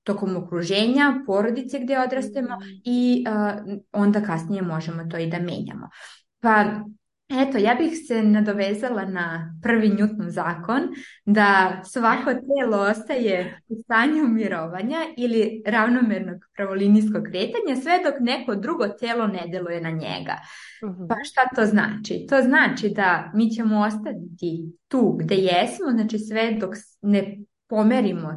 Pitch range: 180-225 Hz